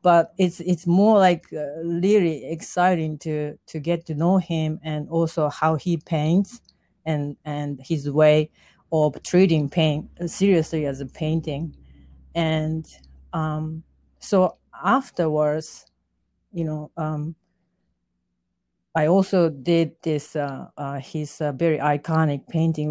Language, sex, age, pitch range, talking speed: English, female, 40-59, 145-175 Hz, 125 wpm